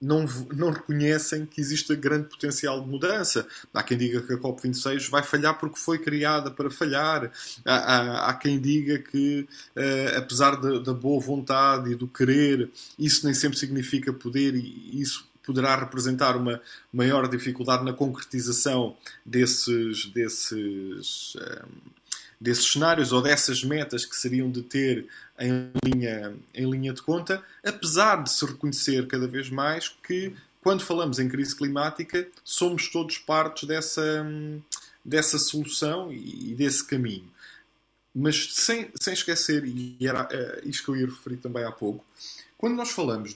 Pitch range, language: 125-150 Hz, Portuguese